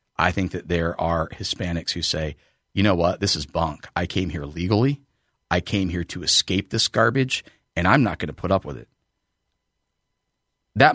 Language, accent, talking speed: English, American, 190 wpm